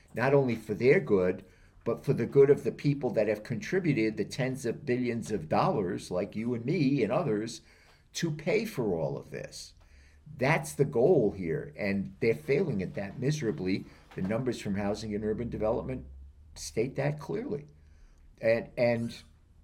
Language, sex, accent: English, male, American